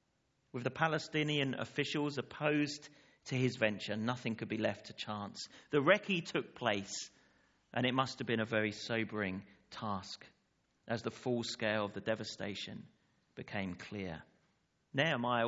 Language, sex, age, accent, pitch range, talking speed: English, male, 40-59, British, 110-150 Hz, 145 wpm